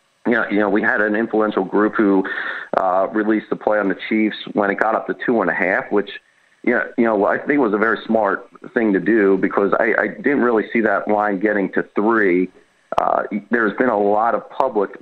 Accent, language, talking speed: American, English, 230 wpm